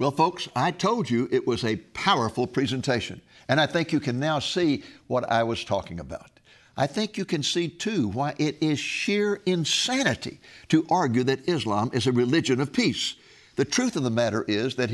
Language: English